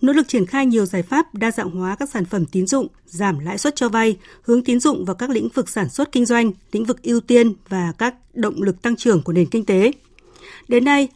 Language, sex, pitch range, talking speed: Vietnamese, female, 195-250 Hz, 255 wpm